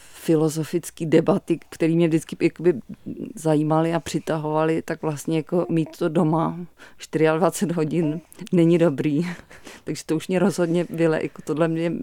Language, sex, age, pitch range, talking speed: Czech, female, 30-49, 155-175 Hz, 135 wpm